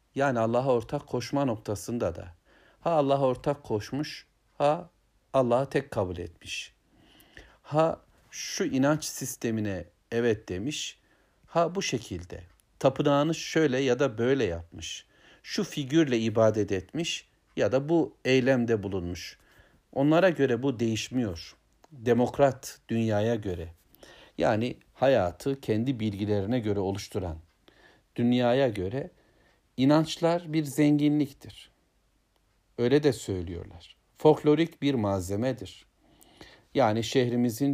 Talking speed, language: 105 wpm, Turkish